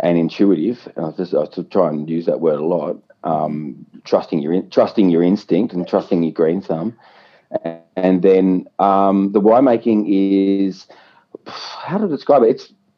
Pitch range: 85-100 Hz